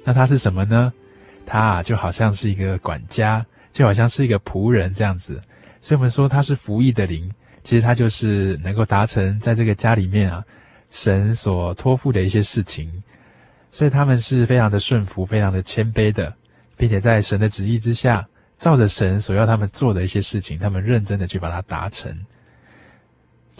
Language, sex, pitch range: Chinese, male, 100-120 Hz